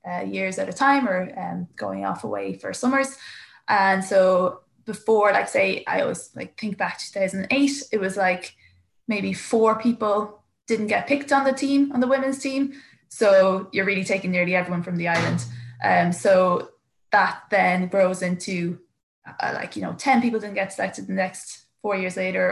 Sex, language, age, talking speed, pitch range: female, English, 20-39, 185 wpm, 180-215 Hz